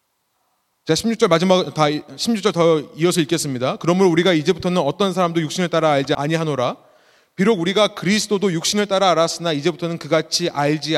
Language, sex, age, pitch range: Korean, male, 30-49, 155-210 Hz